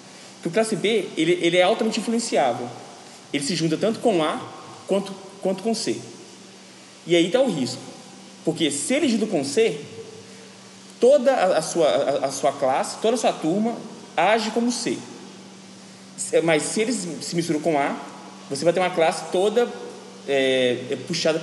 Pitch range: 155-220 Hz